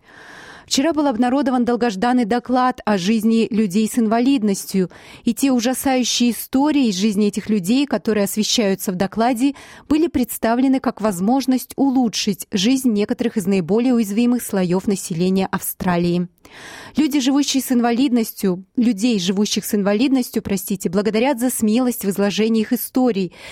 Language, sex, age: Russian, female, 30-49